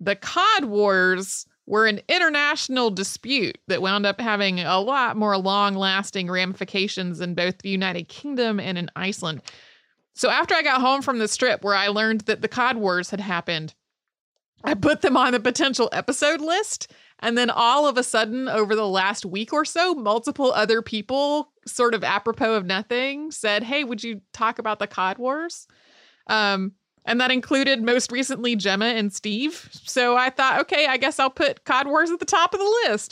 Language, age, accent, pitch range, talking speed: English, 30-49, American, 205-275 Hz, 190 wpm